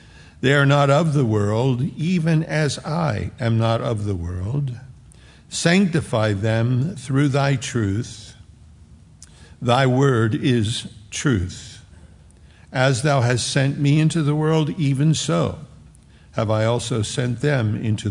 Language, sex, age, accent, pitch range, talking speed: English, male, 60-79, American, 105-130 Hz, 130 wpm